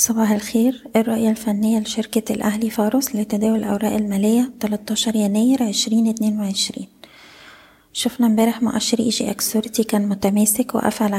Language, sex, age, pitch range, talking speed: Arabic, female, 20-39, 200-225 Hz, 115 wpm